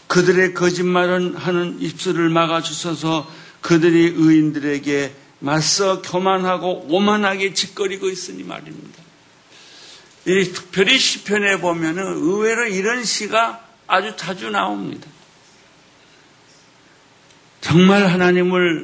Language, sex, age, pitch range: Korean, male, 60-79, 160-190 Hz